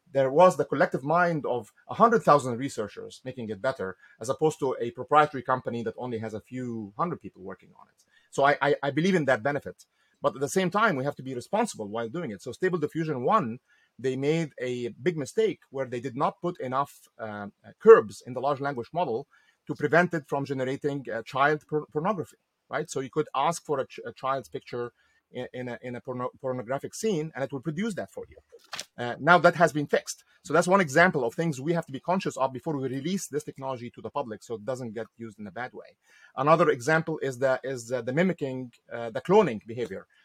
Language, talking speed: English, 225 wpm